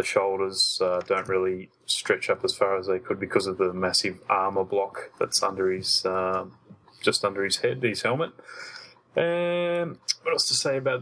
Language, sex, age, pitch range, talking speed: English, male, 20-39, 95-130 Hz, 180 wpm